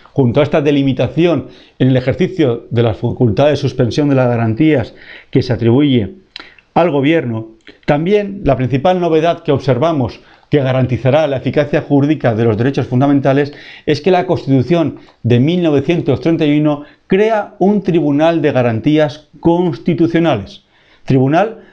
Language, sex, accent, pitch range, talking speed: Spanish, male, Spanish, 125-165 Hz, 135 wpm